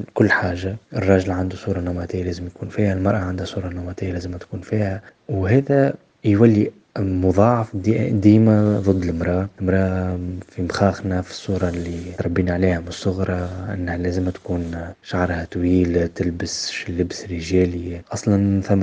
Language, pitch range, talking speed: Arabic, 90-105 Hz, 135 wpm